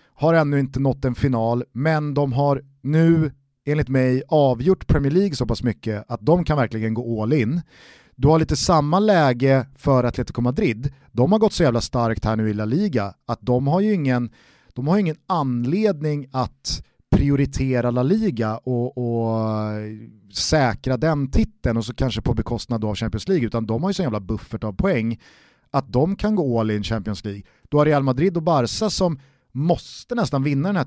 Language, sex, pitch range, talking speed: Swedish, male, 120-165 Hz, 190 wpm